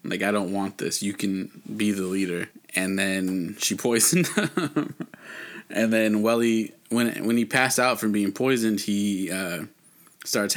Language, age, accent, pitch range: English, 20-39, American, 100-115 Hz